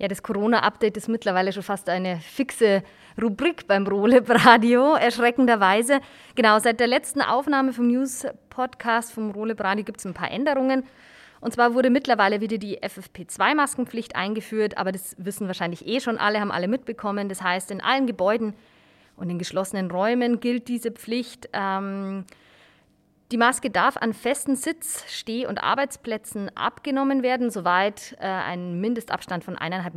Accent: German